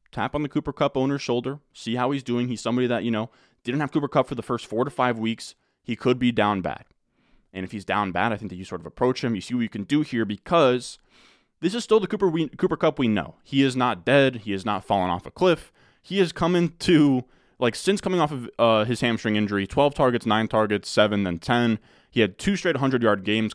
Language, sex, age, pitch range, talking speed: English, male, 20-39, 105-140 Hz, 255 wpm